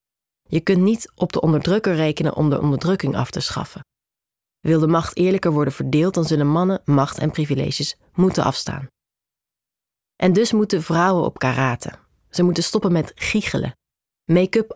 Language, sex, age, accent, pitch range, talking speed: Dutch, female, 30-49, Belgian, 150-185 Hz, 160 wpm